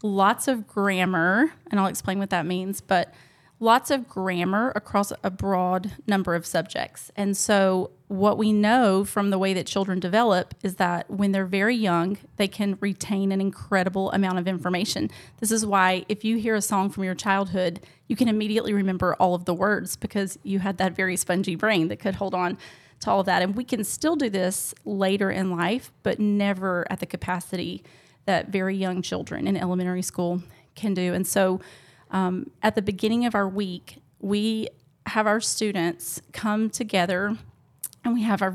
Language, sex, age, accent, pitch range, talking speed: English, female, 30-49, American, 185-210 Hz, 185 wpm